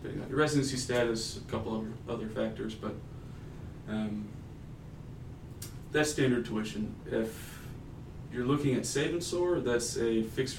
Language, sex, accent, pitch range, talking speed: English, male, American, 115-135 Hz, 125 wpm